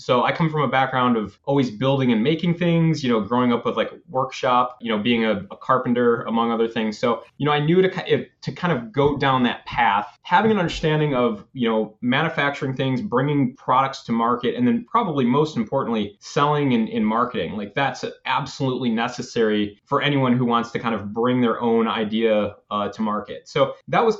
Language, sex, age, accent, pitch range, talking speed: English, male, 20-39, American, 115-145 Hz, 215 wpm